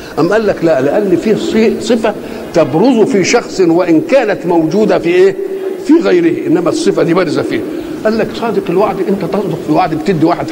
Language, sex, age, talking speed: Arabic, male, 50-69, 185 wpm